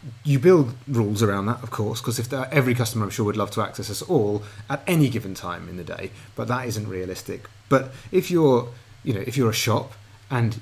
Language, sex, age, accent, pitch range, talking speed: English, male, 30-49, British, 100-125 Hz, 230 wpm